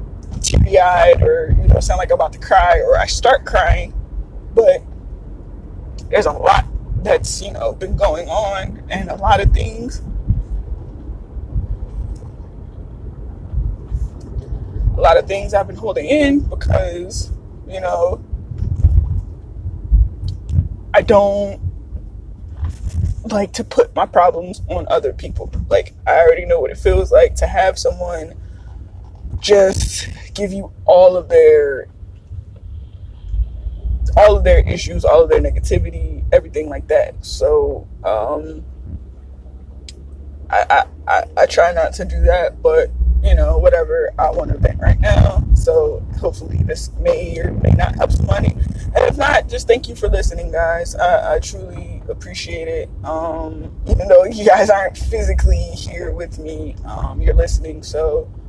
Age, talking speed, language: 20-39, 140 wpm, English